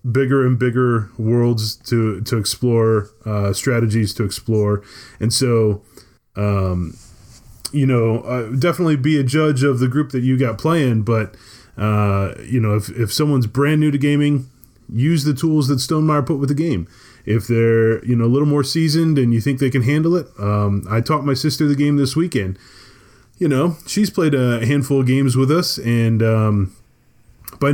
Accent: American